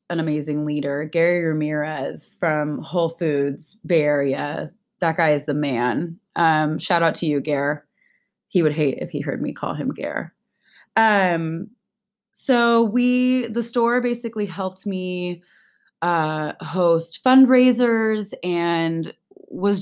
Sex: female